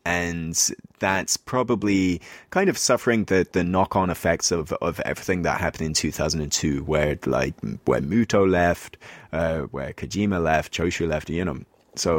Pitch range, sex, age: 75-95 Hz, male, 20-39